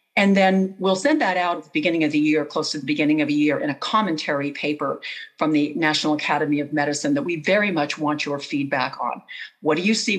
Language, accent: English, American